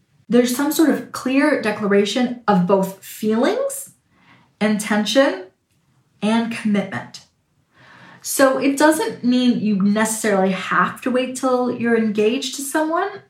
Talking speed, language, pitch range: 115 wpm, English, 180-240 Hz